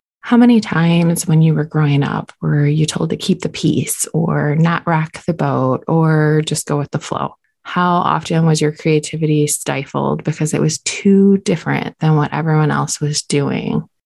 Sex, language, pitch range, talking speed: female, English, 150-180 Hz, 185 wpm